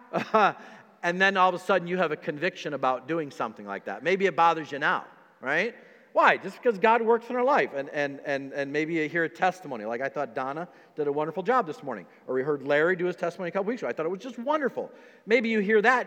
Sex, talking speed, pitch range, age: male, 260 wpm, 140-225 Hz, 50-69